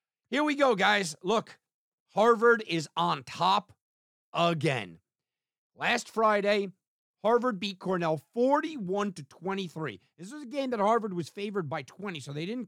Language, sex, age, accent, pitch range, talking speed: English, male, 50-69, American, 145-205 Hz, 140 wpm